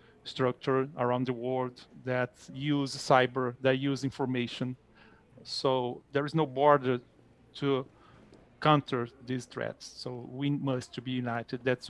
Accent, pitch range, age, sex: Brazilian, 130-145 Hz, 40-59, male